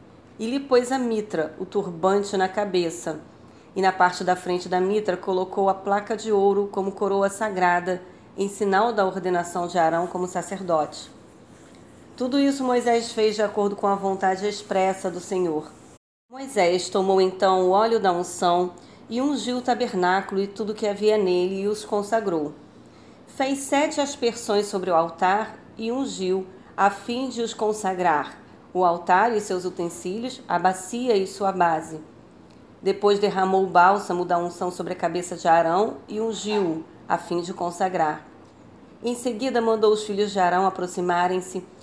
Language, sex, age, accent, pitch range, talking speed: Portuguese, female, 40-59, Brazilian, 180-215 Hz, 160 wpm